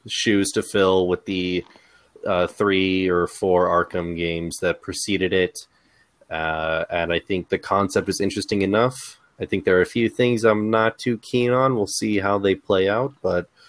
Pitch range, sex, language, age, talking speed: 90-105 Hz, male, English, 30-49, 185 wpm